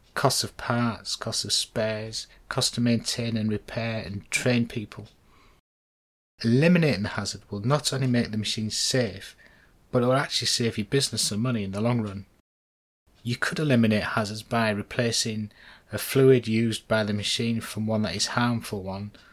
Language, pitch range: English, 105-125 Hz